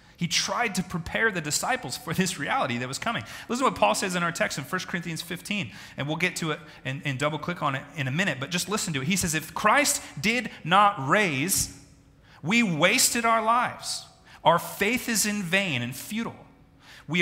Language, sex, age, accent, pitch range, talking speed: English, male, 30-49, American, 135-195 Hz, 215 wpm